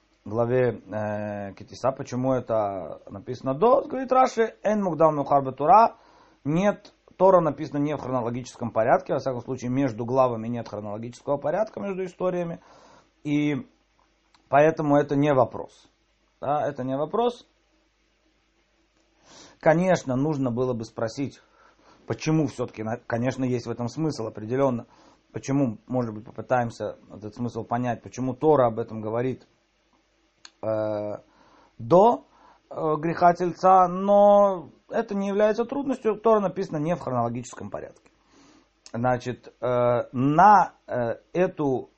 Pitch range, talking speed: 120-165 Hz, 110 wpm